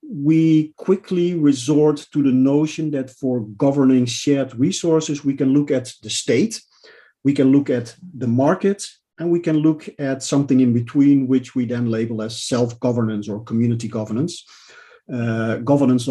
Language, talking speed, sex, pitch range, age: English, 155 wpm, male, 130-155 Hz, 50-69